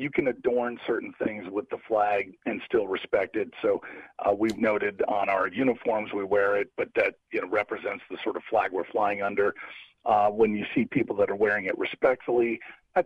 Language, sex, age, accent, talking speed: English, male, 40-59, American, 205 wpm